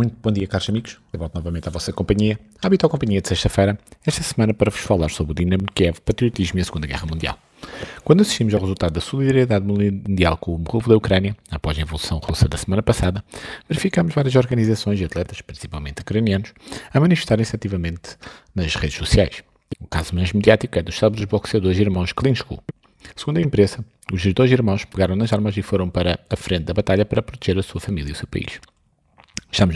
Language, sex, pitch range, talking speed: Portuguese, male, 85-110 Hz, 205 wpm